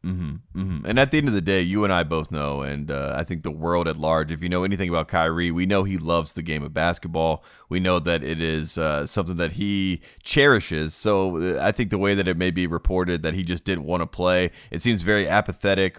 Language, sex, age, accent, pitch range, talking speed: English, male, 30-49, American, 85-100 Hz, 255 wpm